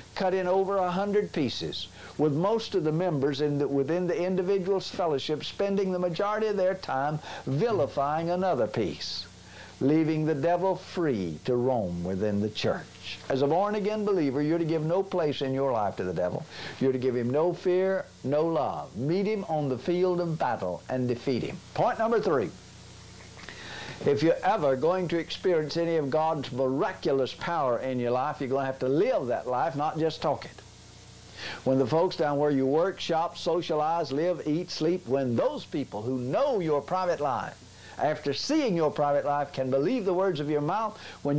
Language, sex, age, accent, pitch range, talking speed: English, male, 60-79, American, 135-185 Hz, 190 wpm